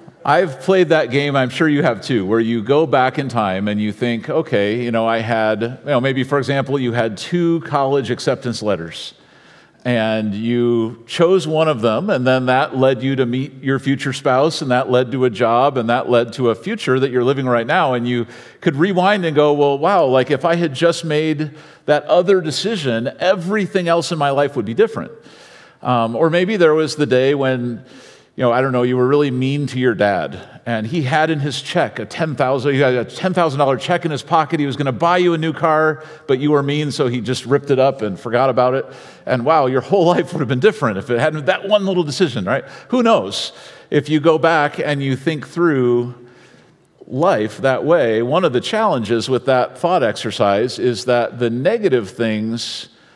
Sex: male